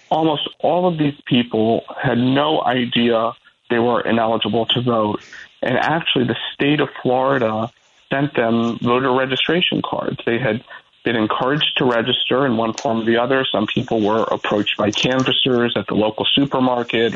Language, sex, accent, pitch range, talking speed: English, male, American, 115-130 Hz, 160 wpm